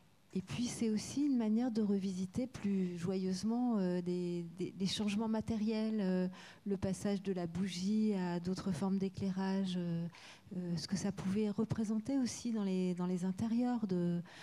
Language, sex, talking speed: French, female, 165 wpm